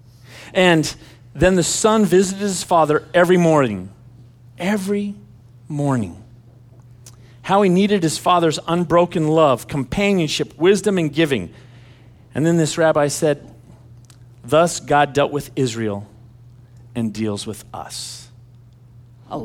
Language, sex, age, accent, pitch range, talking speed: English, male, 40-59, American, 120-160 Hz, 115 wpm